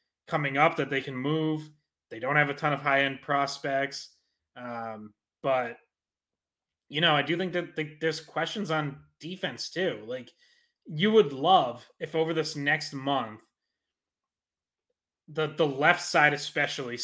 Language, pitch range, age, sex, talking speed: English, 130-155 Hz, 30-49, male, 150 wpm